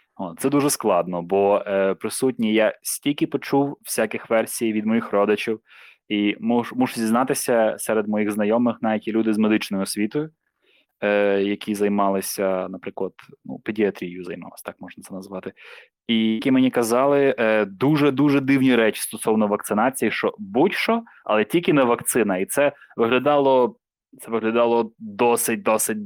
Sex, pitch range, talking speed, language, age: male, 105-130 Hz, 140 wpm, Ukrainian, 20-39